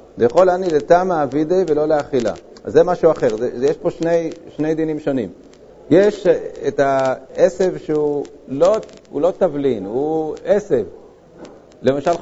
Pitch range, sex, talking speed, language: 135-170 Hz, male, 135 wpm, Hebrew